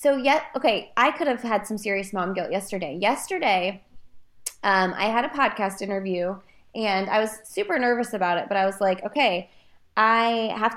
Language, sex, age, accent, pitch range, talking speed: English, female, 20-39, American, 195-260 Hz, 185 wpm